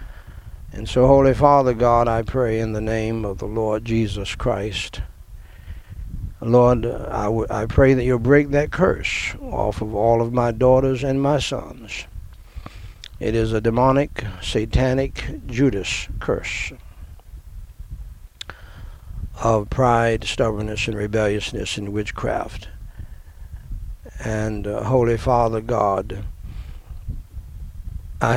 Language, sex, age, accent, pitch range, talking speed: English, male, 60-79, American, 90-120 Hz, 115 wpm